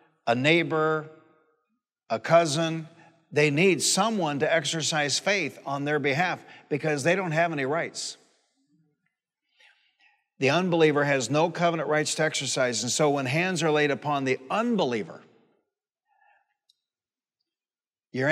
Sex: male